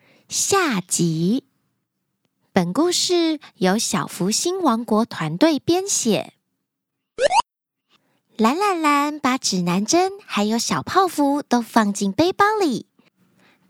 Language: Chinese